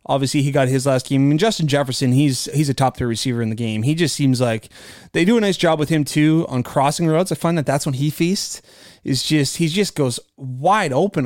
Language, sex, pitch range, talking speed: English, male, 135-165 Hz, 260 wpm